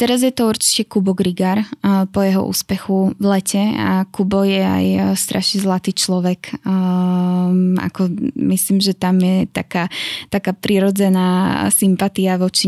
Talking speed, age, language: 135 wpm, 10-29, Slovak